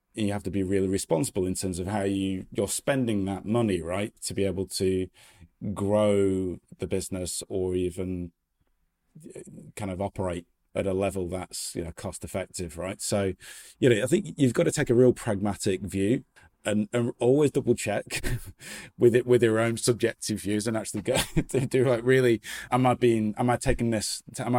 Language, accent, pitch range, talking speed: English, British, 95-120 Hz, 190 wpm